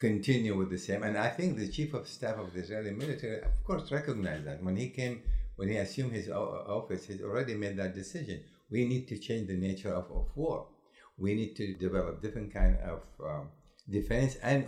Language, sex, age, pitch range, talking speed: English, male, 60-79, 100-135 Hz, 210 wpm